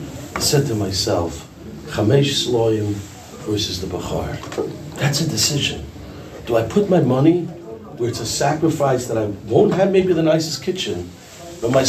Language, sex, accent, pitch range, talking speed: English, male, American, 115-155 Hz, 155 wpm